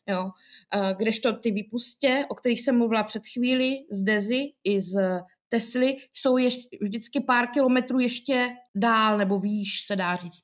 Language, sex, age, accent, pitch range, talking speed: Czech, female, 20-39, native, 215-245 Hz, 145 wpm